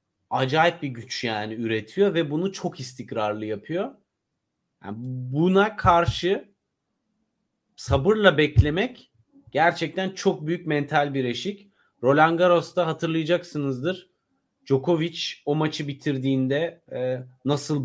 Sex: male